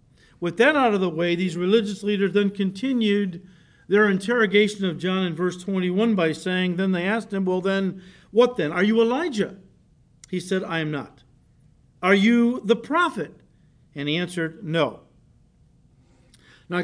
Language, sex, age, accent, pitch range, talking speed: English, male, 50-69, American, 170-230 Hz, 160 wpm